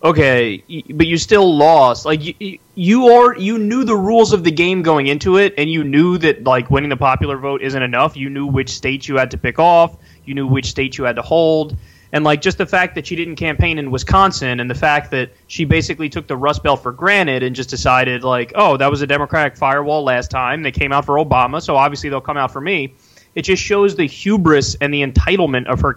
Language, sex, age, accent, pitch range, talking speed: English, male, 20-39, American, 135-185 Hz, 240 wpm